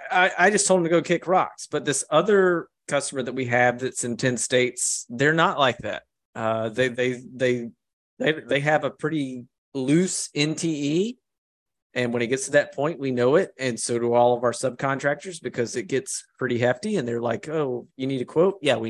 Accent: American